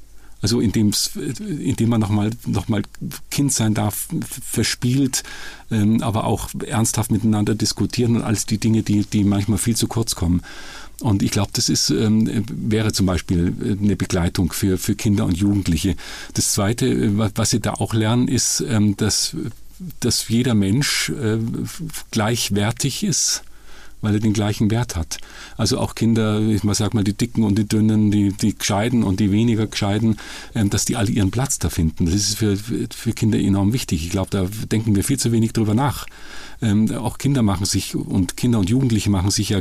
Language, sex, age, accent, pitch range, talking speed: German, male, 50-69, German, 100-115 Hz, 175 wpm